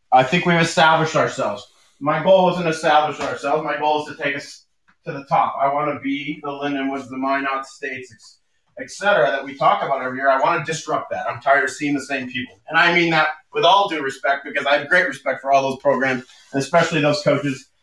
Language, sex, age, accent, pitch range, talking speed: English, male, 30-49, American, 140-180 Hz, 235 wpm